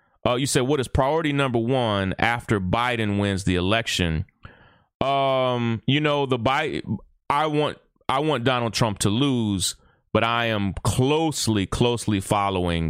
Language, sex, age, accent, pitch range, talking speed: English, male, 30-49, American, 90-115 Hz, 160 wpm